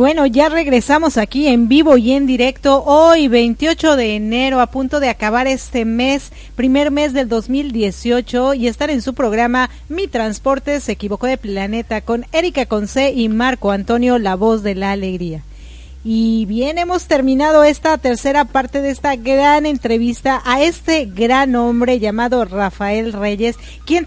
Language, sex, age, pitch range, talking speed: Spanish, female, 40-59, 225-280 Hz, 160 wpm